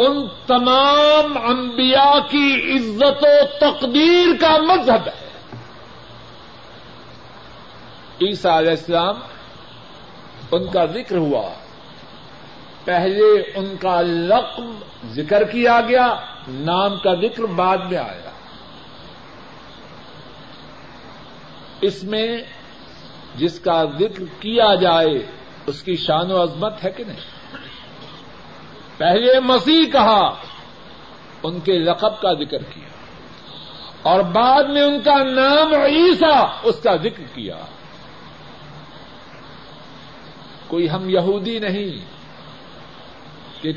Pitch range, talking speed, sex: 175-265 Hz, 95 wpm, male